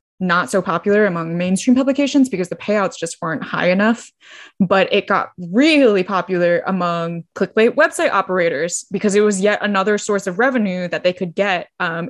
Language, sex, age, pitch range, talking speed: English, female, 10-29, 180-225 Hz, 175 wpm